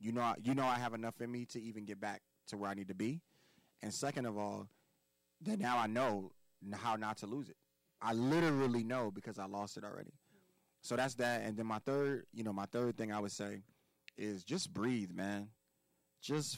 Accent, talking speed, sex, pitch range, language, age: American, 220 wpm, male, 100-120 Hz, English, 20-39